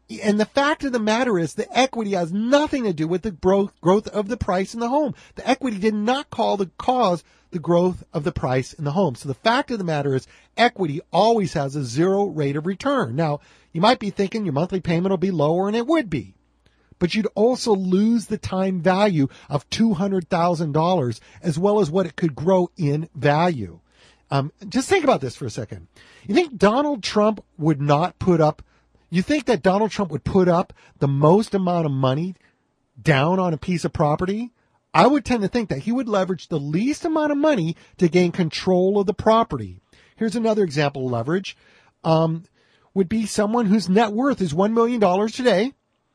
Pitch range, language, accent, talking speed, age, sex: 160-215 Hz, English, American, 205 wpm, 40-59, male